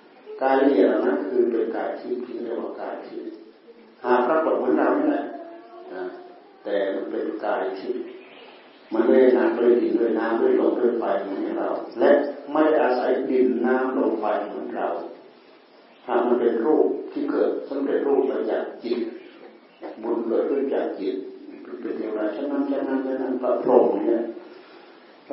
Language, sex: Thai, male